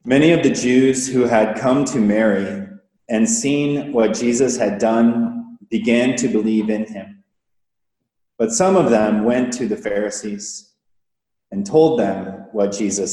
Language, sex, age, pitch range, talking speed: English, male, 30-49, 110-140 Hz, 150 wpm